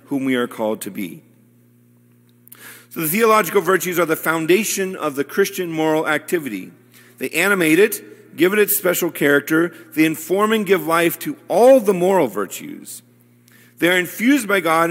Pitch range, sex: 140-185 Hz, male